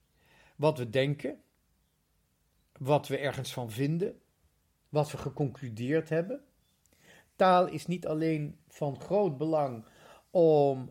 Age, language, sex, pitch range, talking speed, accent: 50-69, Dutch, male, 130-170 Hz, 110 wpm, Dutch